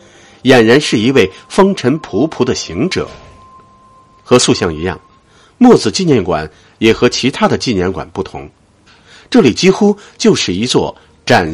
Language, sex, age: Chinese, male, 50-69